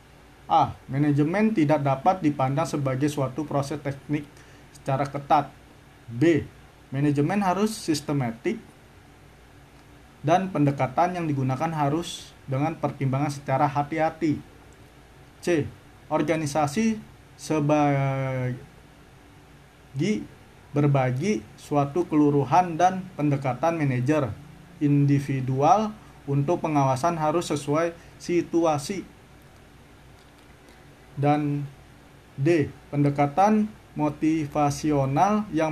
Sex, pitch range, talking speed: male, 135-160 Hz, 70 wpm